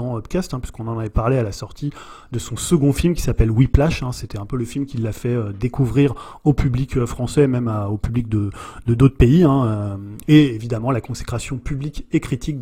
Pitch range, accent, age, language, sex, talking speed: 115-150 Hz, French, 30-49, French, male, 225 wpm